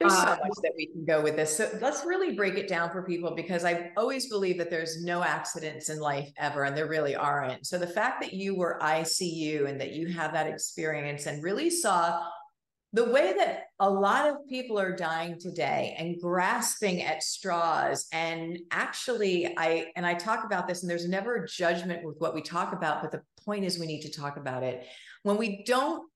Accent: American